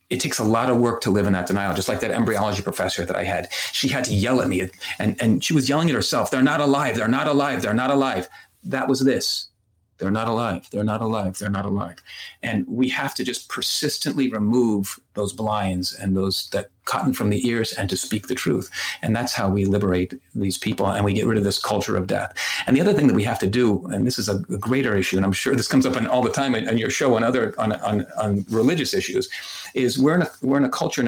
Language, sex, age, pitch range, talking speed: English, male, 40-59, 105-135 Hz, 260 wpm